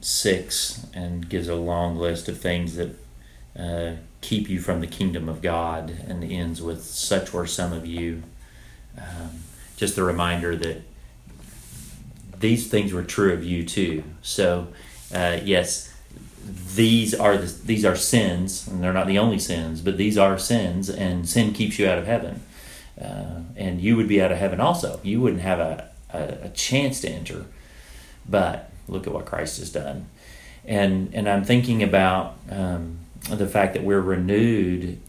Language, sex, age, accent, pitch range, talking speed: English, male, 30-49, American, 85-100 Hz, 170 wpm